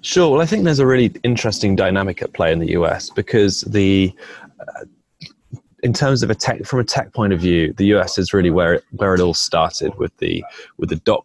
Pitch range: 90-110 Hz